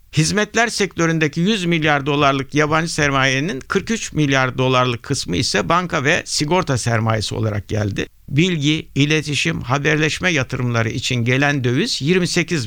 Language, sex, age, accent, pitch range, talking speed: Turkish, male, 60-79, native, 125-180 Hz, 125 wpm